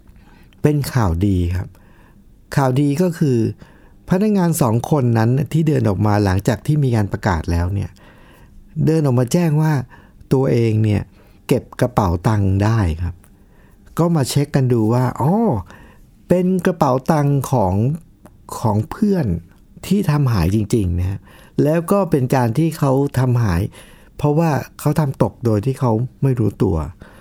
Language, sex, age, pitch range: Thai, male, 60-79, 105-155 Hz